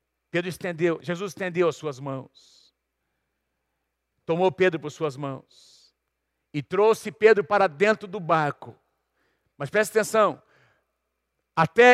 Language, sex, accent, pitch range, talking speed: Portuguese, male, Brazilian, 175-235 Hz, 115 wpm